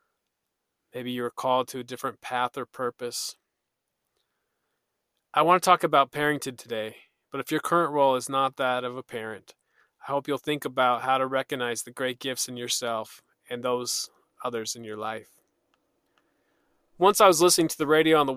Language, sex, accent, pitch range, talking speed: English, male, American, 125-150 Hz, 185 wpm